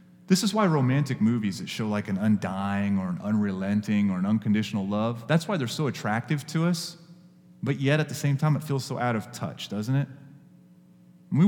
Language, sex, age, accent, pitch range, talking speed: English, male, 30-49, American, 110-180 Hz, 205 wpm